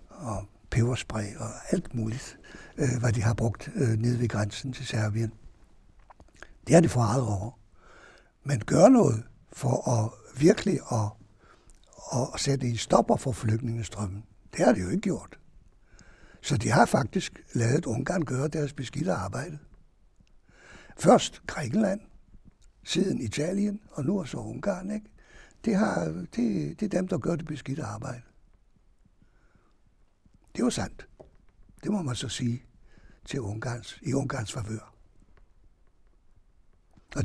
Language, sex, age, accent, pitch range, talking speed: Danish, male, 60-79, German, 105-140 Hz, 140 wpm